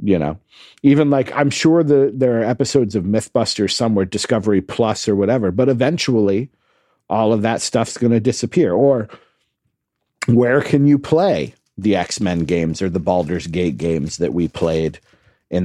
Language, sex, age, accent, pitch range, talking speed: English, male, 50-69, American, 95-130 Hz, 160 wpm